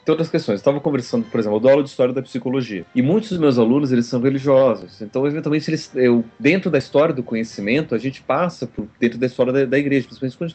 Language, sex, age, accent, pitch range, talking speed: Portuguese, male, 30-49, Brazilian, 115-155 Hz, 245 wpm